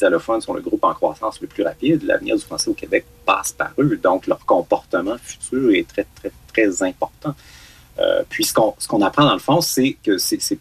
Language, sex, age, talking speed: French, male, 30-49, 220 wpm